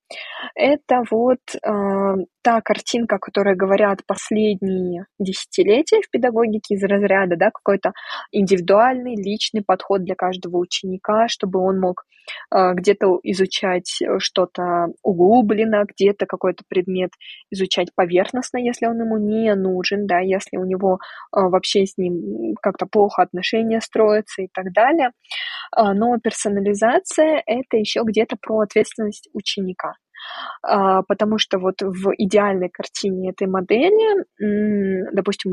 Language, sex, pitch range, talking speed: Russian, female, 190-220 Hz, 120 wpm